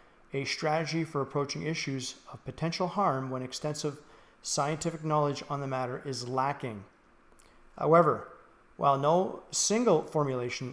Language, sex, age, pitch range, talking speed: English, male, 40-59, 130-160 Hz, 125 wpm